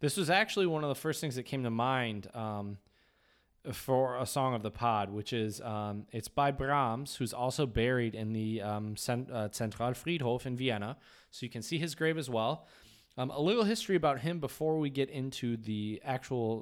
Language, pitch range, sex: English, 105-140 Hz, male